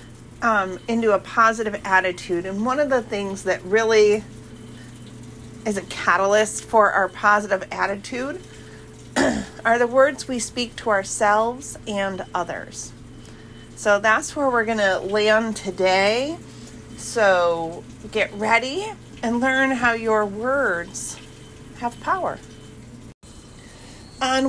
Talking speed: 115 wpm